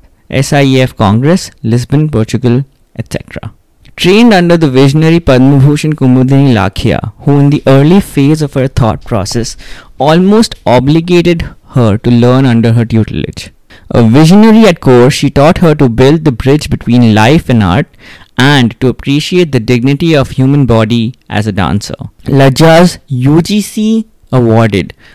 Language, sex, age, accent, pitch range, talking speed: English, male, 20-39, Indian, 115-150 Hz, 140 wpm